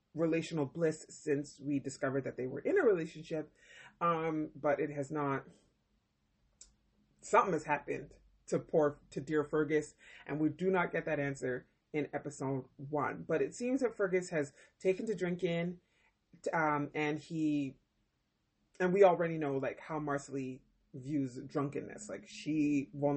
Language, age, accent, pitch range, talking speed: English, 30-49, American, 145-185 Hz, 150 wpm